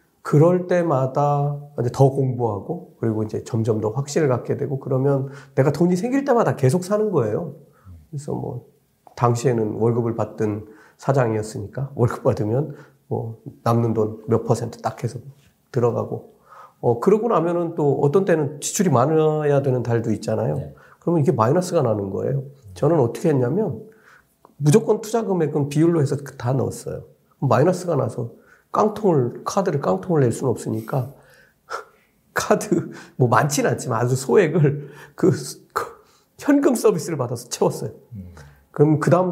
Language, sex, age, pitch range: Korean, male, 40-59, 115-160 Hz